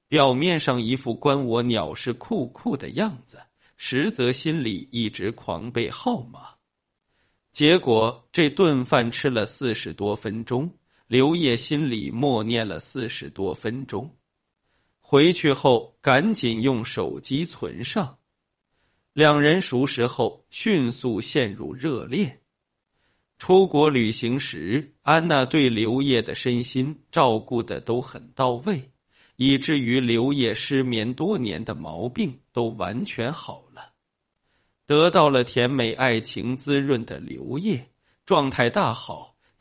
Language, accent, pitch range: Chinese, native, 120-145 Hz